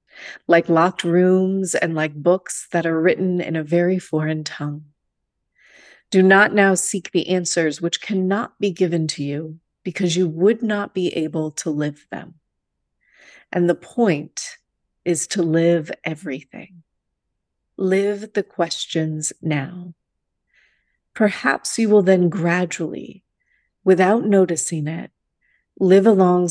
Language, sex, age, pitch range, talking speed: English, female, 40-59, 160-190 Hz, 125 wpm